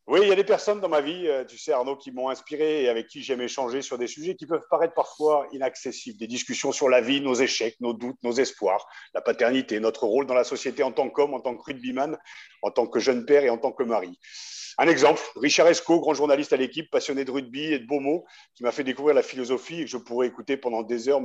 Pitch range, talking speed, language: 130-165 Hz, 260 wpm, French